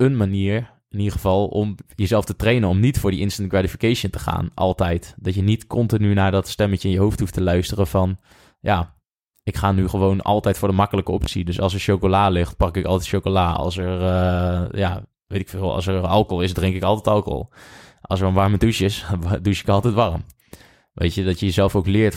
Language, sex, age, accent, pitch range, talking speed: Dutch, male, 20-39, Dutch, 90-100 Hz, 225 wpm